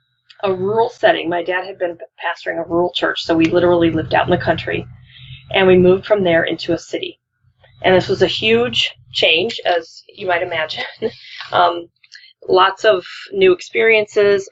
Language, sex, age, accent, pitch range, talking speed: English, female, 20-39, American, 160-205 Hz, 175 wpm